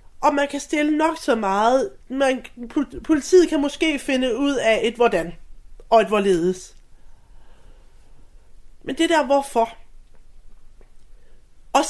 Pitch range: 210-275 Hz